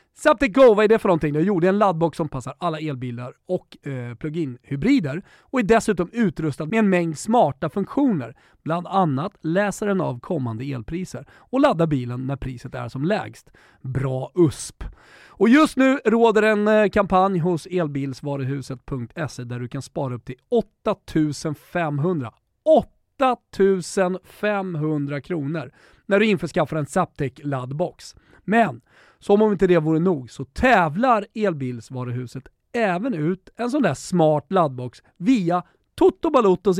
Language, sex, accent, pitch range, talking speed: Swedish, male, native, 140-210 Hz, 145 wpm